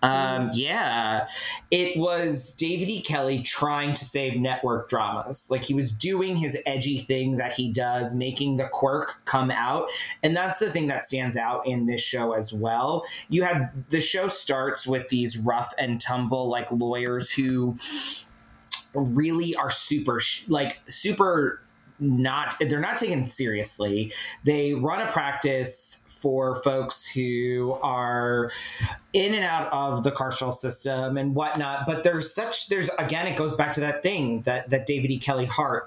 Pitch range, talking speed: 125-150 Hz, 160 wpm